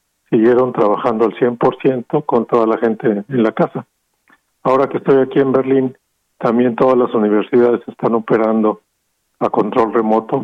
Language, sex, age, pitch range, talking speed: Spanish, male, 50-69, 110-130 Hz, 150 wpm